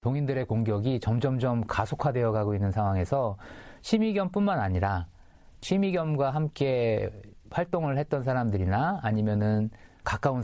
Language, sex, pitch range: Korean, male, 110-155 Hz